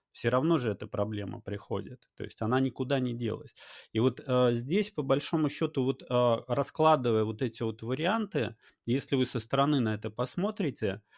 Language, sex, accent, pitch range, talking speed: Russian, male, native, 110-135 Hz, 175 wpm